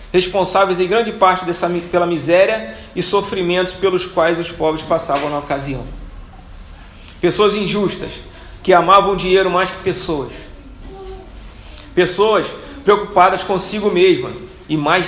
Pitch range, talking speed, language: 155-205 Hz, 125 wpm, Portuguese